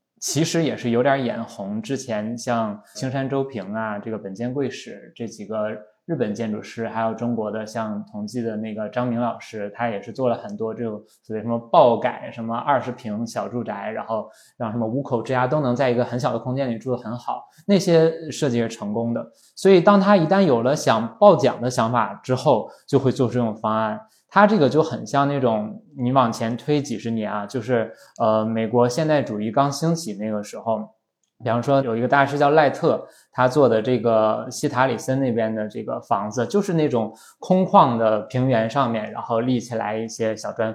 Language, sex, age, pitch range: Chinese, male, 20-39, 110-140 Hz